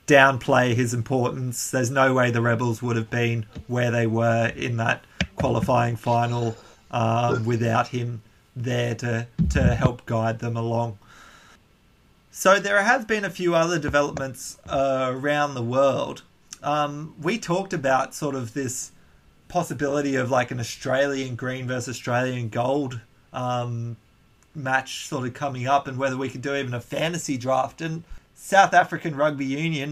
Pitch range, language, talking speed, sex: 125-145 Hz, English, 150 wpm, male